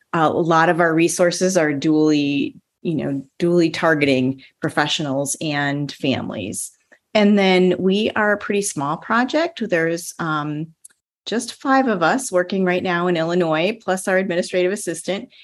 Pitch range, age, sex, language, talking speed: 155-190 Hz, 30-49, female, English, 145 wpm